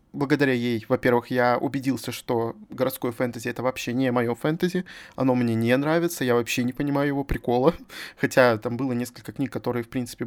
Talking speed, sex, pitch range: 180 wpm, male, 125-155 Hz